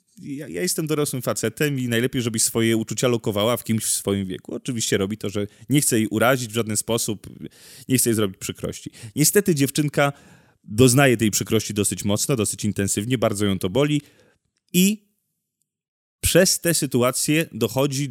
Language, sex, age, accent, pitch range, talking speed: Polish, male, 30-49, native, 110-135 Hz, 160 wpm